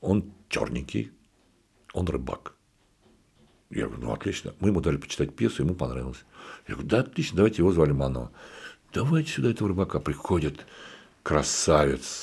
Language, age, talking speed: Russian, 60-79, 140 wpm